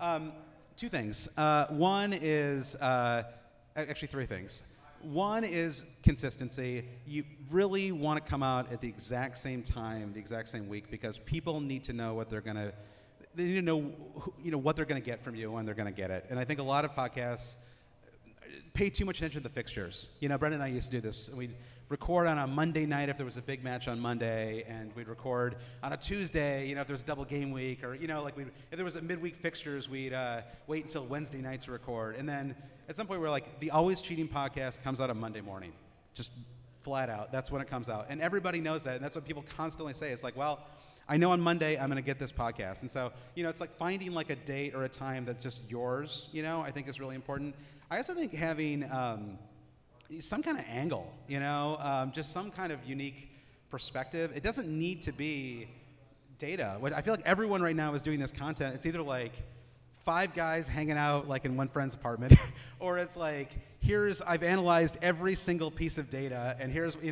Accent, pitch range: American, 125-155 Hz